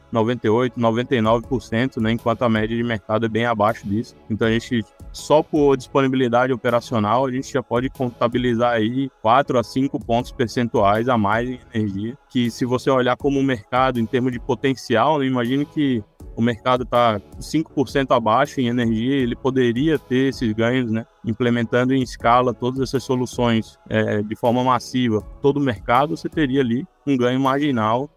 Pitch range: 110-125 Hz